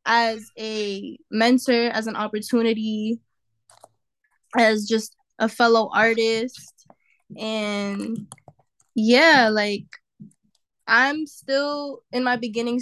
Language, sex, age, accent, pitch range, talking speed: English, female, 10-29, American, 210-235 Hz, 90 wpm